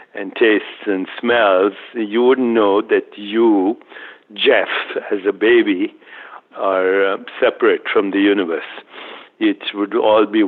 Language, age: English, 60-79